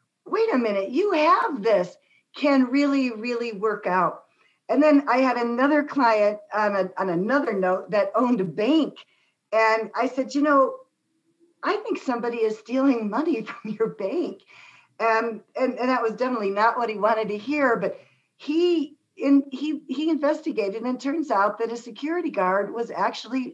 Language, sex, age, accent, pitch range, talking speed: English, female, 50-69, American, 205-270 Hz, 175 wpm